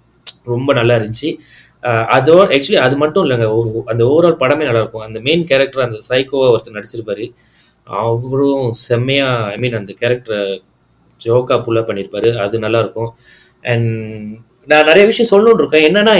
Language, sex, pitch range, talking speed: Tamil, male, 115-155 Hz, 140 wpm